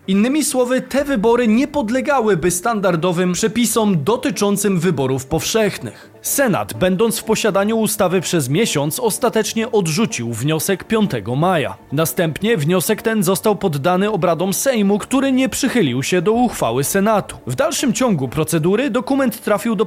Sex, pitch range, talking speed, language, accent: male, 160-225 Hz, 135 wpm, Polish, native